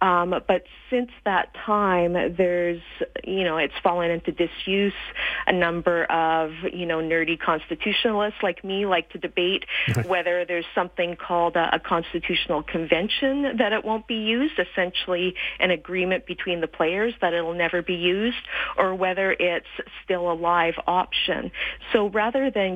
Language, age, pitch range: English, 40-59, 165-185 Hz